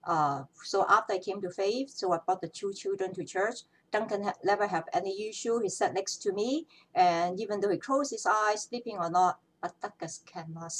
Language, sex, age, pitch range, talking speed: English, female, 60-79, 170-235 Hz, 215 wpm